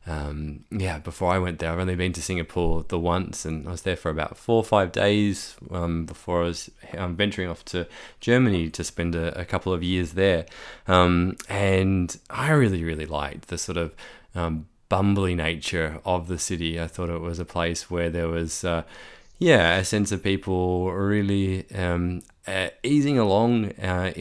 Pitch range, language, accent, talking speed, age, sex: 85-95 Hz, English, Australian, 190 wpm, 20-39, male